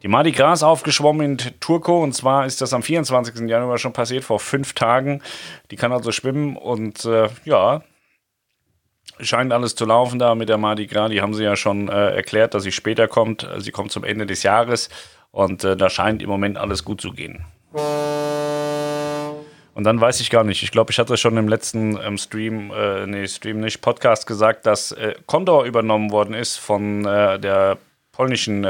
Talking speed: 190 wpm